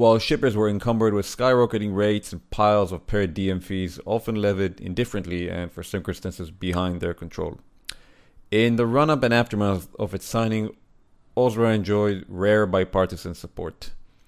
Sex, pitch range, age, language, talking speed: male, 90-110 Hz, 30-49, English, 150 wpm